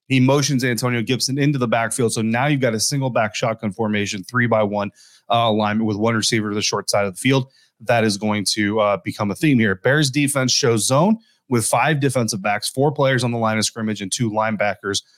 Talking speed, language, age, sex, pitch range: 230 wpm, English, 30-49, male, 110-130 Hz